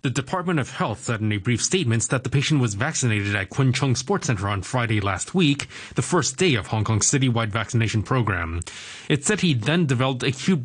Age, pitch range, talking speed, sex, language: 20-39, 110-150 Hz, 210 wpm, male, English